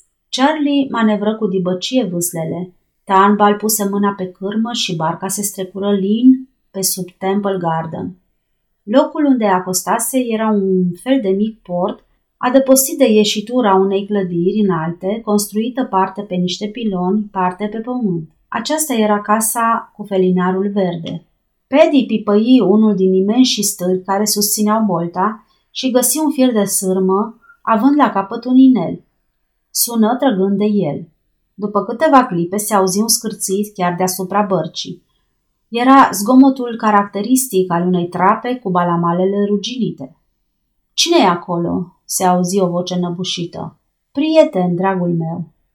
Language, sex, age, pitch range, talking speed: Romanian, female, 30-49, 185-235 Hz, 135 wpm